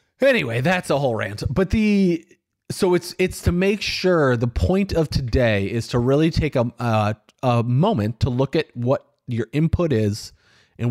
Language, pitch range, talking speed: English, 110-150 Hz, 175 wpm